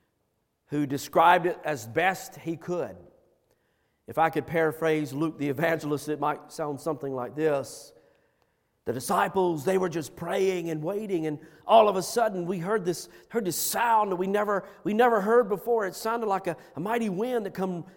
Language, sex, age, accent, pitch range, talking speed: English, male, 50-69, American, 145-195 Hz, 185 wpm